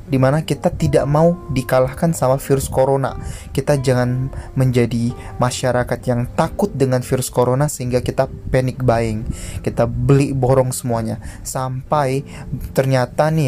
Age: 20-39